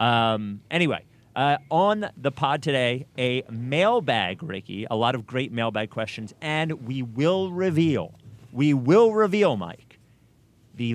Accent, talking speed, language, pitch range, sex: American, 135 wpm, English, 105-140 Hz, male